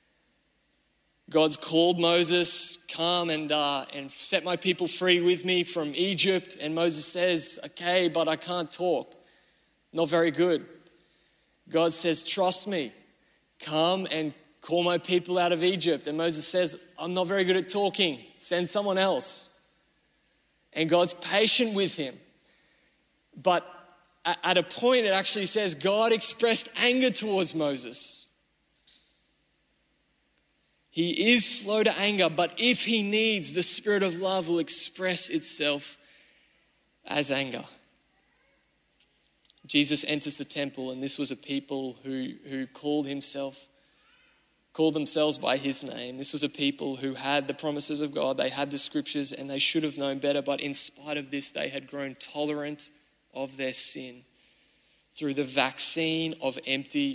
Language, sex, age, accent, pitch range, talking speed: English, male, 20-39, Australian, 145-180 Hz, 145 wpm